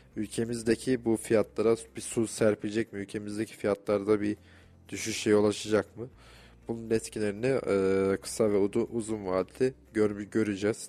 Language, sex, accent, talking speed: Turkish, male, native, 110 wpm